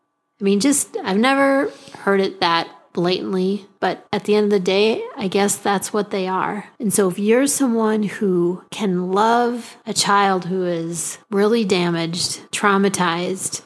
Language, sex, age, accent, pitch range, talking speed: English, female, 30-49, American, 180-205 Hz, 165 wpm